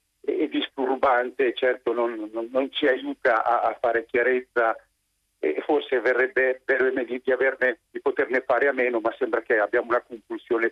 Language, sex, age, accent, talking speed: Italian, male, 50-69, native, 180 wpm